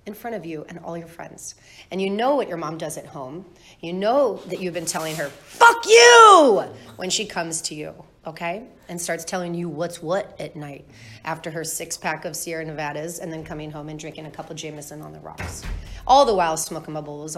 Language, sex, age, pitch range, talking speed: English, female, 30-49, 155-210 Hz, 220 wpm